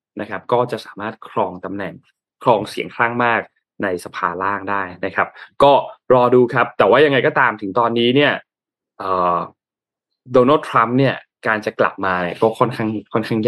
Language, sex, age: Thai, male, 20-39